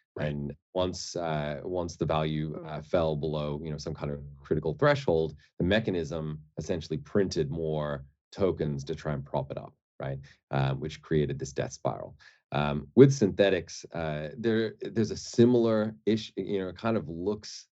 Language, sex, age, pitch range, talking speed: English, male, 30-49, 70-85 Hz, 170 wpm